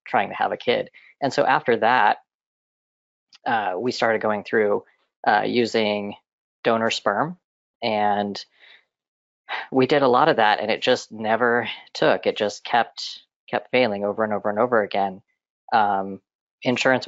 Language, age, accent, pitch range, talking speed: English, 30-49, American, 105-125 Hz, 150 wpm